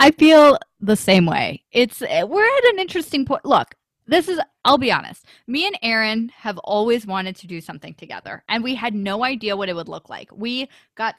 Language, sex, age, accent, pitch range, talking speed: English, female, 20-39, American, 190-255 Hz, 210 wpm